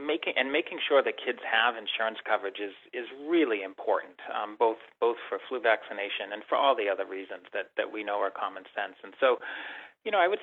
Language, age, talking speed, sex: English, 40-59, 220 wpm, male